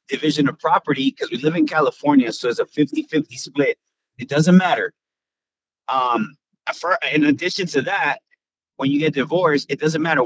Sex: male